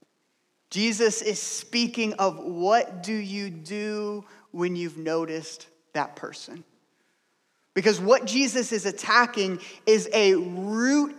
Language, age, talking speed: English, 20-39, 115 wpm